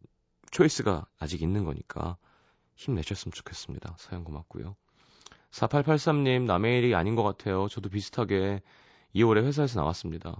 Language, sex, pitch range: Korean, male, 85-125 Hz